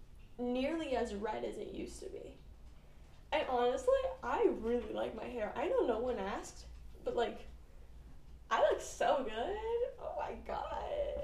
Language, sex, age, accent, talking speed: English, female, 10-29, American, 155 wpm